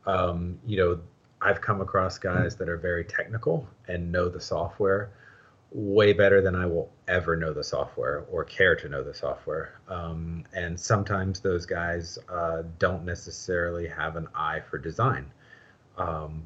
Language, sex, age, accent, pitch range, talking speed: English, male, 30-49, American, 80-100 Hz, 160 wpm